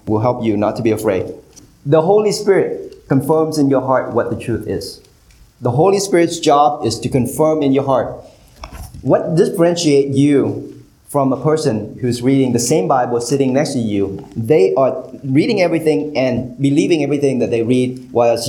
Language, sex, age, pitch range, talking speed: English, male, 30-49, 125-160 Hz, 175 wpm